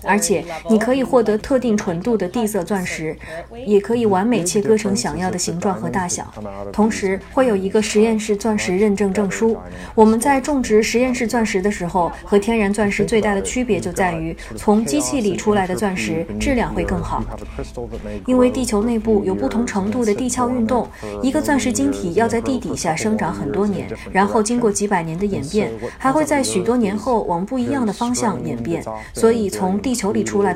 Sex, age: female, 20-39